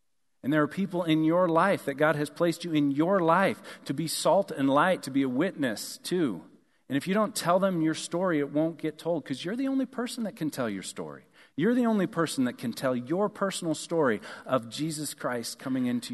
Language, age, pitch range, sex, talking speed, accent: English, 40-59, 135-170 Hz, male, 230 wpm, American